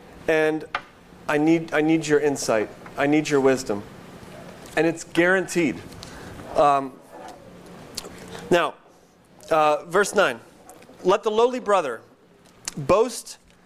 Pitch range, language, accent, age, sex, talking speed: 155-200 Hz, English, American, 30-49, male, 105 wpm